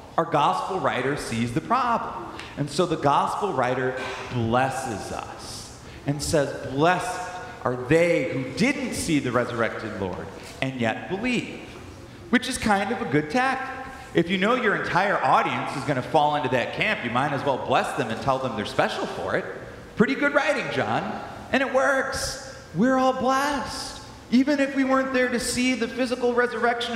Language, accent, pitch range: English, American, 155-235 Hz